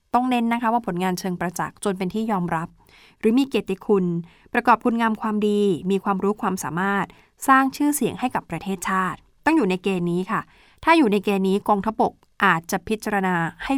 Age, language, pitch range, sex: 20-39, Thai, 180-220 Hz, female